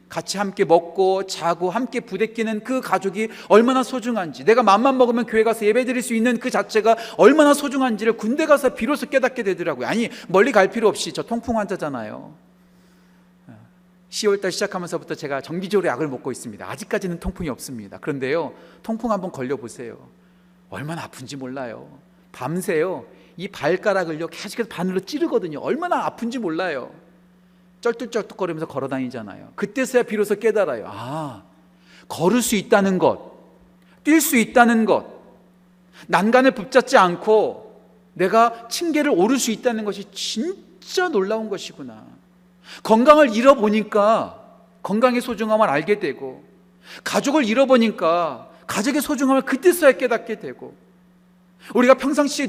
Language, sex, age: Korean, male, 40-59